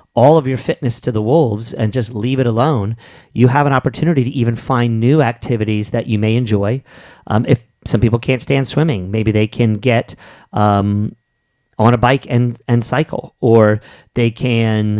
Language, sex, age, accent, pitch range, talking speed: English, male, 40-59, American, 115-135 Hz, 190 wpm